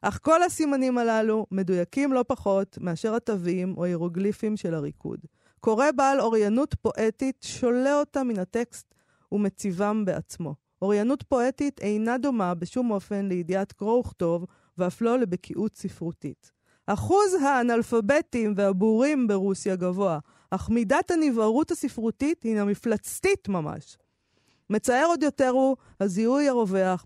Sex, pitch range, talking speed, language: female, 185-250 Hz, 120 wpm, Hebrew